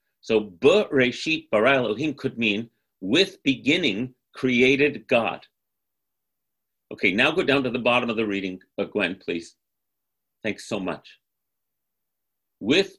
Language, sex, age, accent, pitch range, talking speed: English, male, 50-69, American, 120-165 Hz, 125 wpm